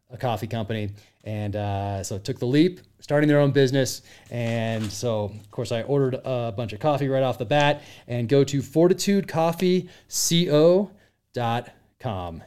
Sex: male